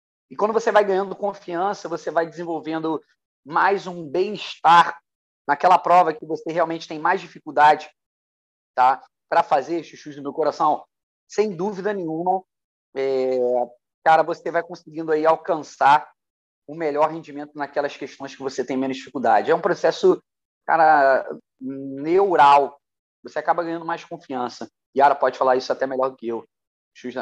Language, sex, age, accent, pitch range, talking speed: Portuguese, male, 30-49, Brazilian, 145-190 Hz, 150 wpm